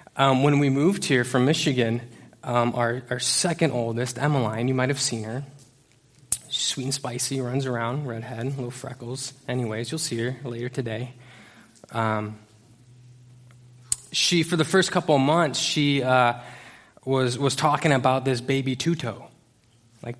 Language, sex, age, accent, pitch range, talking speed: English, male, 20-39, American, 125-170 Hz, 150 wpm